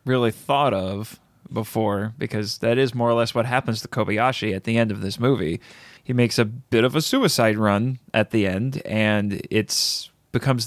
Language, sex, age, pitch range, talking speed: English, male, 20-39, 110-140 Hz, 190 wpm